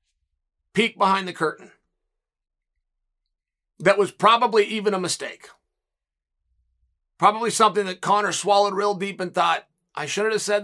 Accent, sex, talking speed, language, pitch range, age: American, male, 130 wpm, English, 175-235 Hz, 40-59